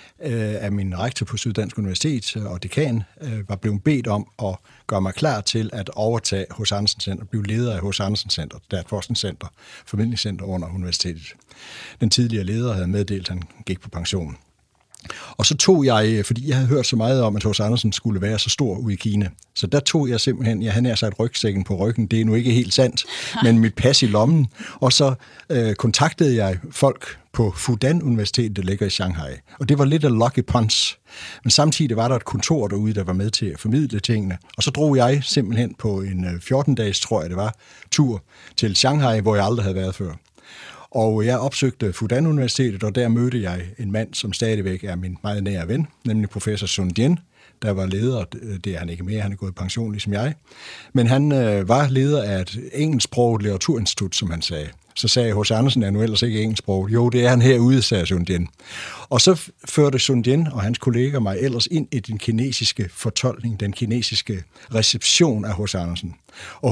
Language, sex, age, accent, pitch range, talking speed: Danish, male, 60-79, native, 100-125 Hz, 205 wpm